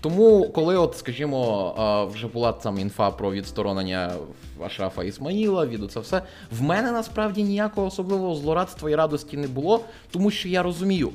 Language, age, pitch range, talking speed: Ukrainian, 20-39, 110-175 Hz, 155 wpm